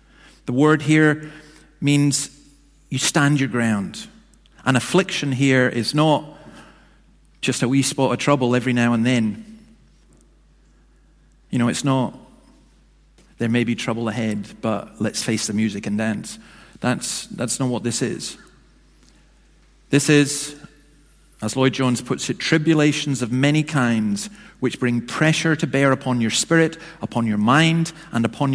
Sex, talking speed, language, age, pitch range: male, 145 wpm, English, 40-59, 120-150 Hz